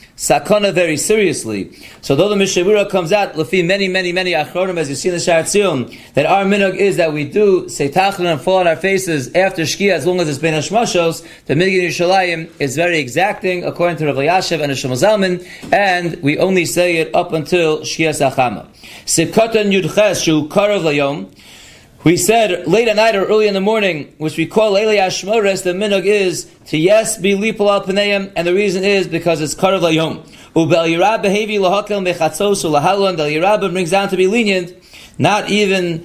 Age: 30-49